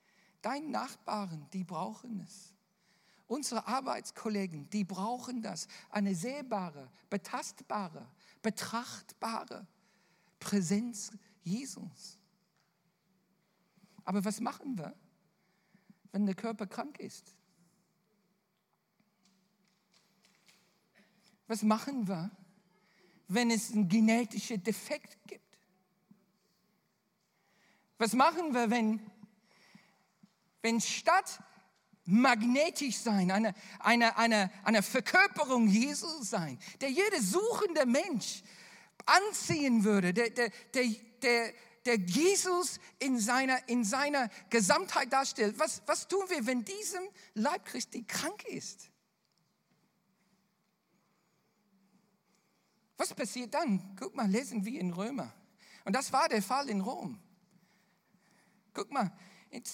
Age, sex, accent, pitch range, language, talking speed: 50-69, male, German, 195-240 Hz, German, 95 wpm